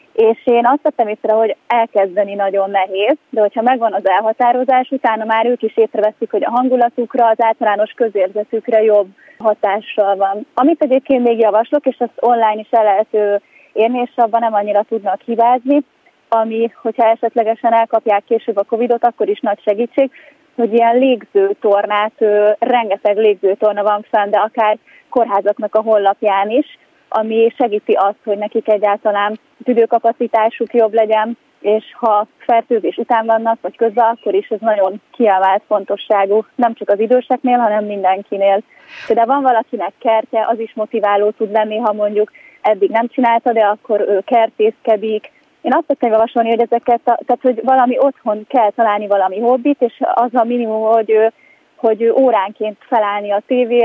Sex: female